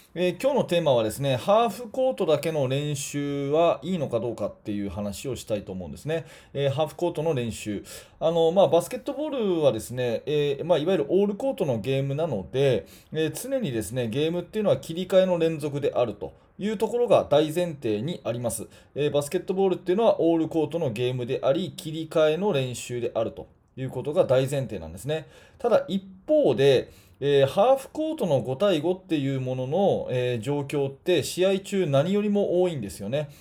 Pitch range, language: 130-180 Hz, Japanese